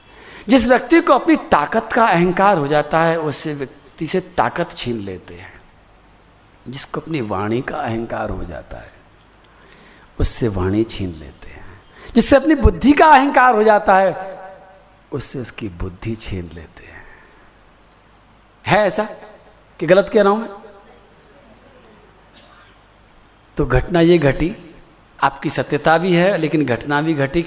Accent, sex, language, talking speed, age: native, male, Hindi, 140 wpm, 50-69